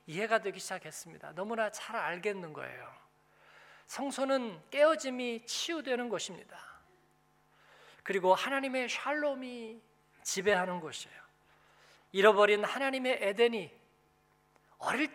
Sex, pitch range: male, 215-280 Hz